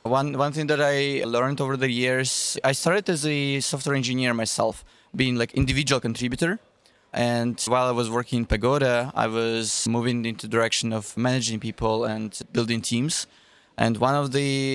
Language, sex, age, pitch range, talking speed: English, male, 20-39, 115-135 Hz, 170 wpm